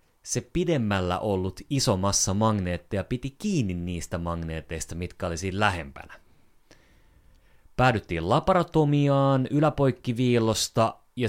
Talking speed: 90 wpm